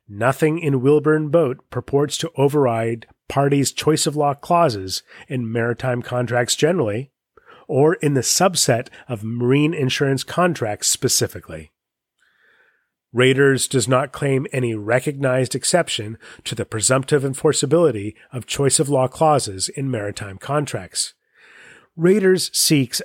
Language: English